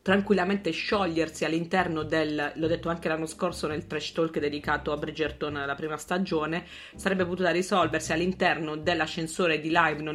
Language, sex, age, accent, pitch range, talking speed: Italian, female, 30-49, native, 155-195 Hz, 155 wpm